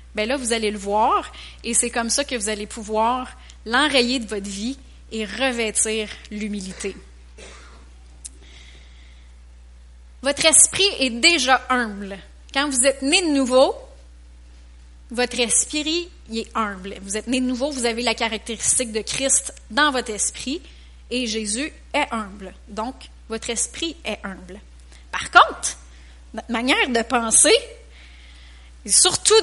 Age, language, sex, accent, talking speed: 30-49, French, female, Canadian, 135 wpm